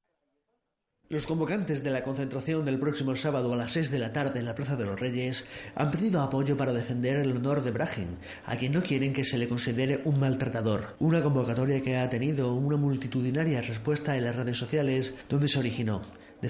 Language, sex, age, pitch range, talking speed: Spanish, male, 30-49, 120-140 Hz, 200 wpm